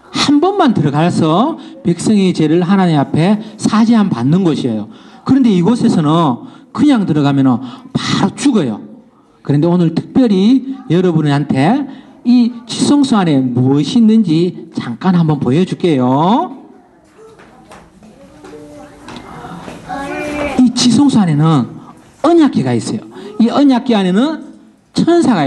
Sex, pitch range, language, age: male, 170-260 Hz, Korean, 40-59